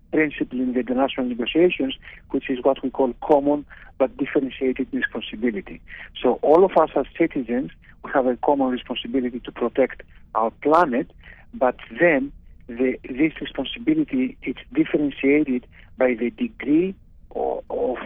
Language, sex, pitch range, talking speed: English, male, 130-165 Hz, 135 wpm